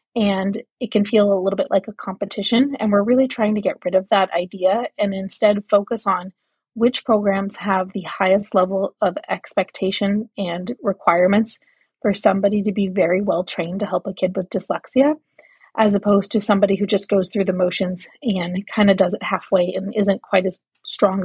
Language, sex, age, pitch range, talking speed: English, female, 30-49, 190-220 Hz, 190 wpm